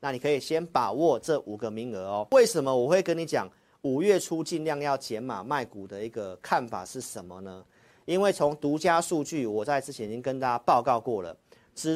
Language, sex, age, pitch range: Chinese, male, 40-59, 125-185 Hz